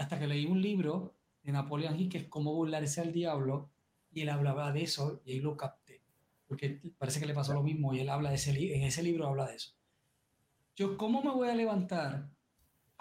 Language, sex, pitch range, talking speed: Spanish, male, 145-180 Hz, 225 wpm